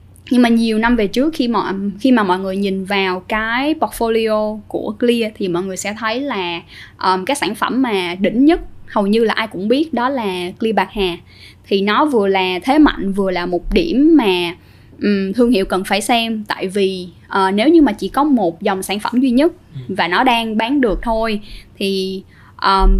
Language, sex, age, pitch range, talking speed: Vietnamese, female, 10-29, 190-250 Hz, 210 wpm